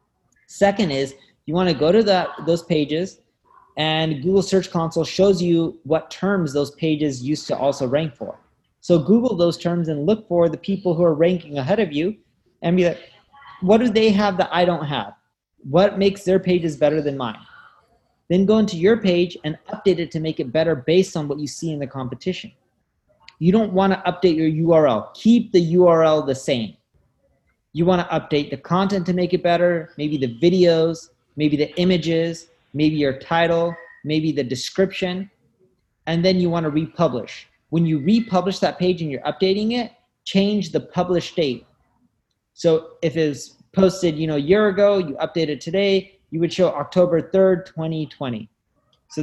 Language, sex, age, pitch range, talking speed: English, male, 30-49, 155-185 Hz, 180 wpm